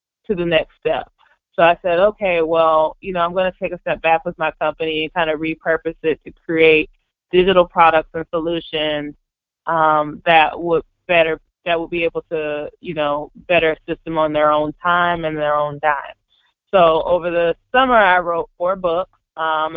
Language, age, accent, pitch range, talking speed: English, 20-39, American, 155-175 Hz, 190 wpm